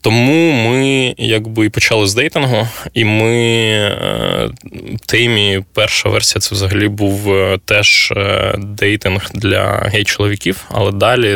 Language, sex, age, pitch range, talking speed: Ukrainian, male, 20-39, 95-110 Hz, 105 wpm